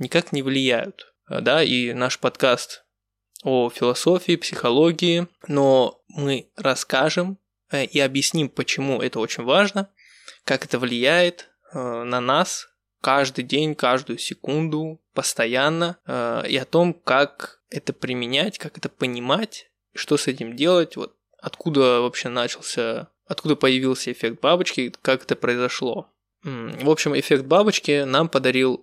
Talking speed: 125 wpm